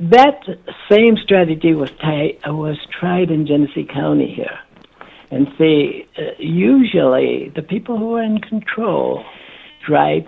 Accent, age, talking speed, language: American, 60-79, 125 wpm, English